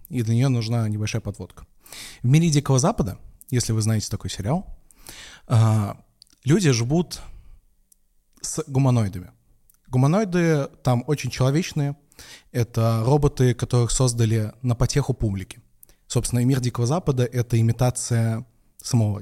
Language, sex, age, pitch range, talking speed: Russian, male, 20-39, 115-145 Hz, 120 wpm